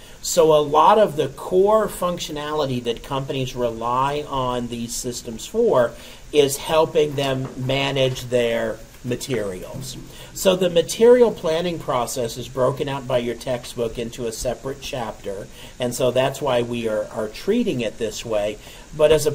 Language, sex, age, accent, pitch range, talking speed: English, male, 50-69, American, 120-150 Hz, 150 wpm